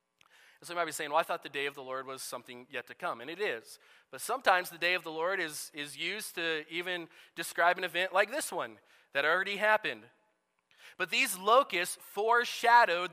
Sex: male